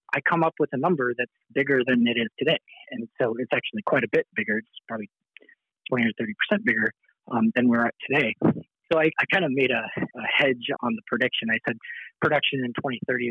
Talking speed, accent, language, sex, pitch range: 215 wpm, American, English, male, 115-140 Hz